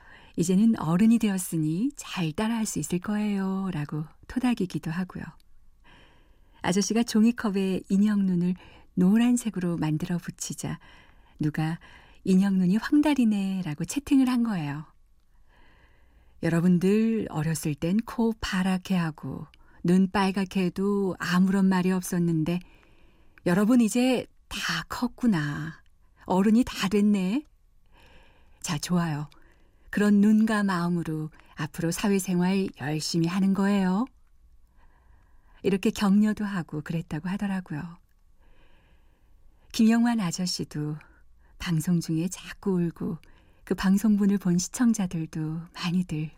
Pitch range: 160-210 Hz